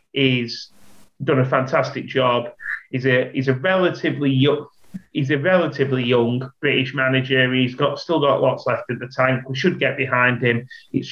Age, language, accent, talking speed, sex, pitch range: 30-49, English, British, 175 wpm, male, 130-160 Hz